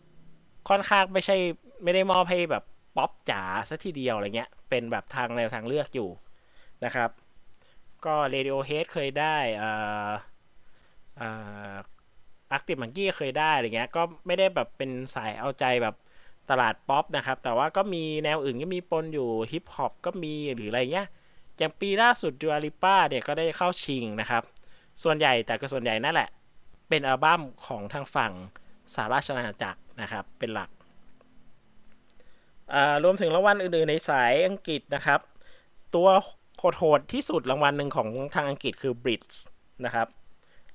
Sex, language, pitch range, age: male, Thai, 130-170 Hz, 20-39